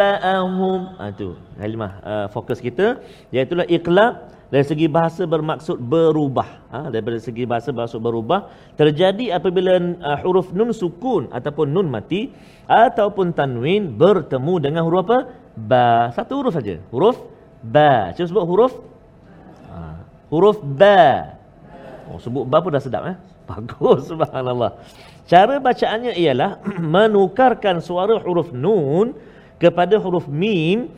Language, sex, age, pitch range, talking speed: Malayalam, male, 40-59, 130-210 Hz, 130 wpm